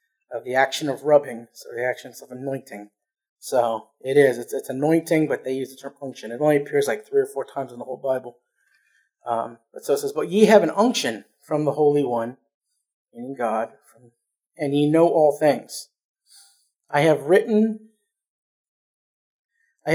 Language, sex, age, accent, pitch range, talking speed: English, male, 30-49, American, 140-215 Hz, 180 wpm